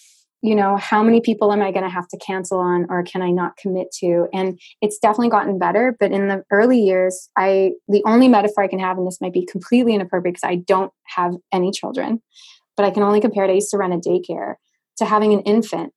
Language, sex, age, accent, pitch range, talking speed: English, female, 20-39, American, 185-215 Hz, 240 wpm